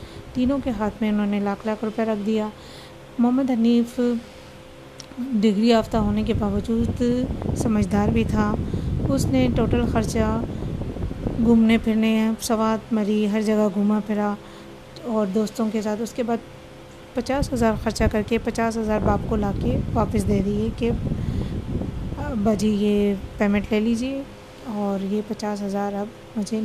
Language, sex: Urdu, female